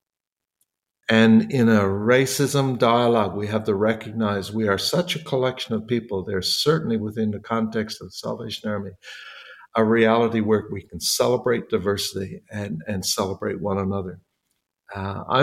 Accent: American